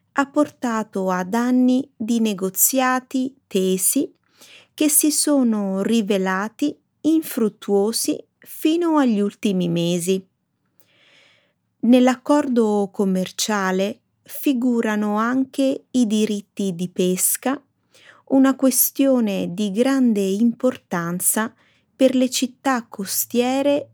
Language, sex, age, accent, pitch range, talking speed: Italian, female, 20-39, native, 195-265 Hz, 85 wpm